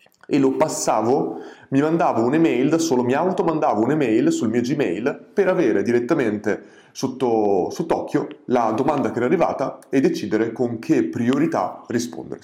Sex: male